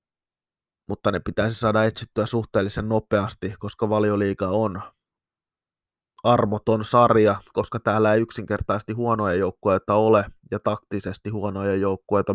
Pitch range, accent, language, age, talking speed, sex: 100-115 Hz, native, Finnish, 20-39, 110 wpm, male